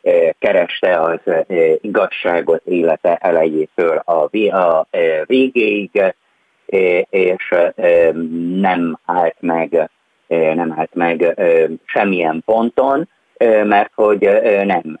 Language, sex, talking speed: Hungarian, male, 70 wpm